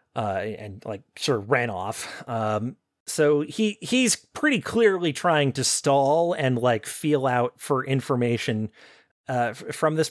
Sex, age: male, 30-49